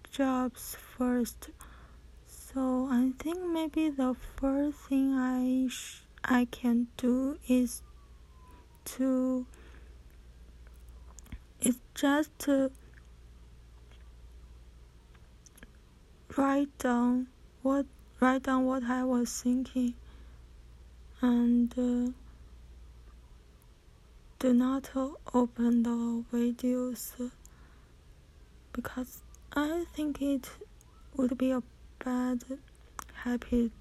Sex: female